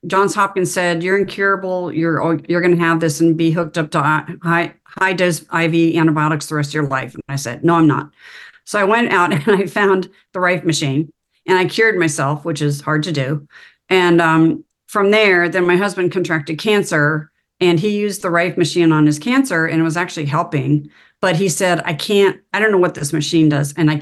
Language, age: English, 40-59